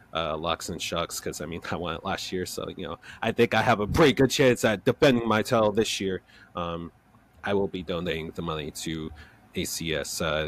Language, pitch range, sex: English, 90-110 Hz, male